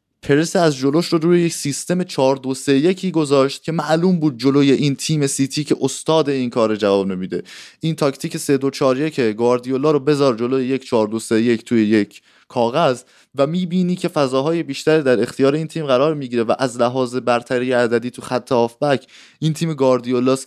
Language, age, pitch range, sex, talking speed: Persian, 20-39, 115-150 Hz, male, 165 wpm